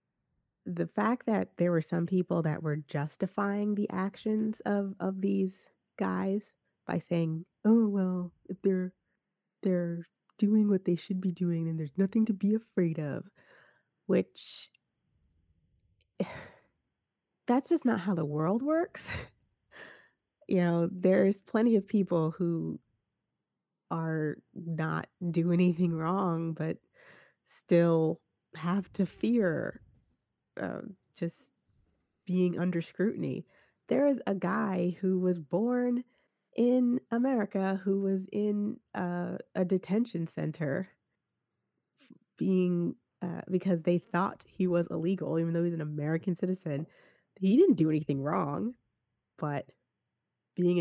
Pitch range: 170-205 Hz